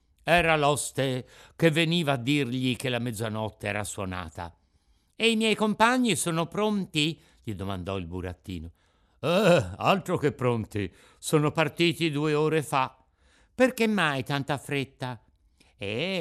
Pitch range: 105-165 Hz